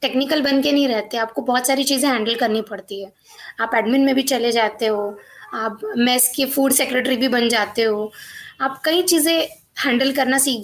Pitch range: 240-290 Hz